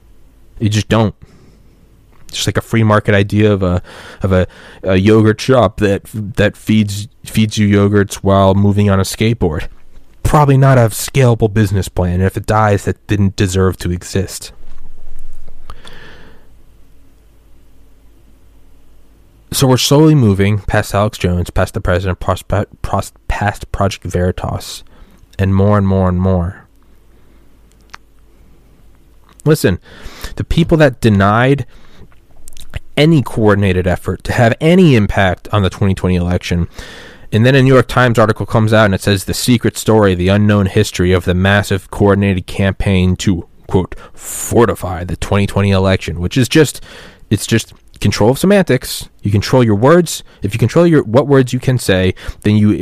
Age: 20-39